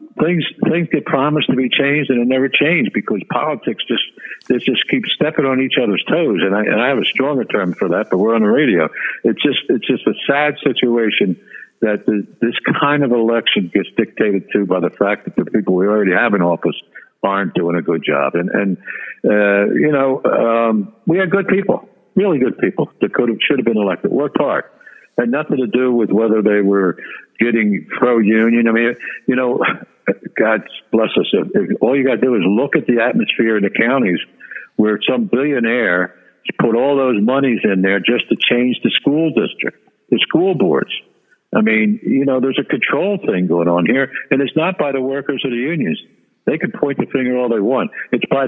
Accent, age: American, 60-79